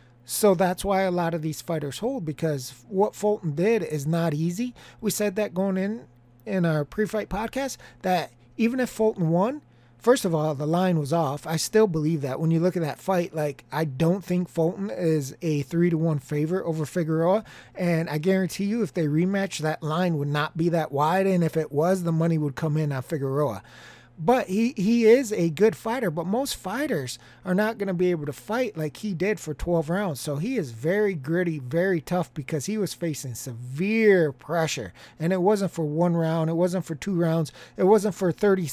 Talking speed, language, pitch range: 210 wpm, English, 155-210 Hz